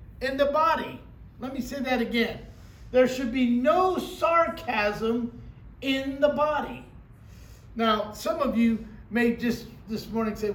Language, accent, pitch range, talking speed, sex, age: English, American, 230-290 Hz, 140 wpm, male, 50-69